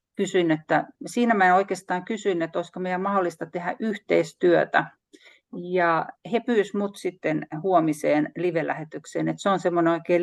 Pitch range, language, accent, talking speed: 165-205 Hz, Finnish, native, 140 wpm